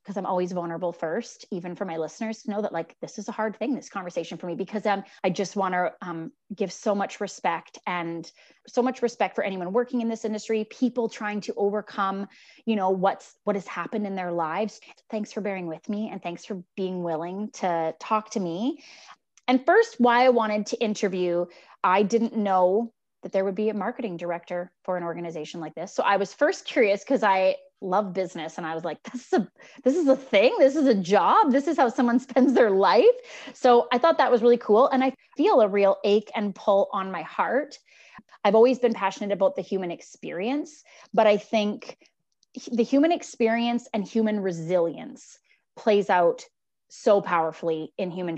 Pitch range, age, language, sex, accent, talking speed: 185-235 Hz, 20-39, English, female, American, 205 wpm